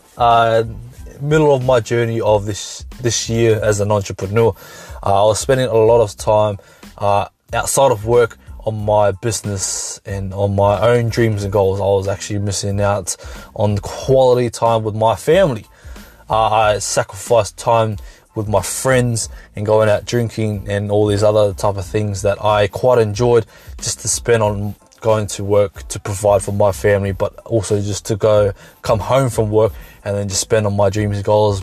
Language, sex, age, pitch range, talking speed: English, male, 20-39, 100-115 Hz, 185 wpm